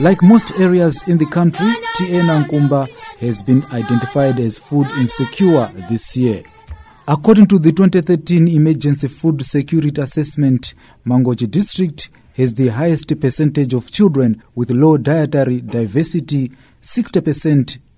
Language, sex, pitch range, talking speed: English, male, 120-155 Hz, 125 wpm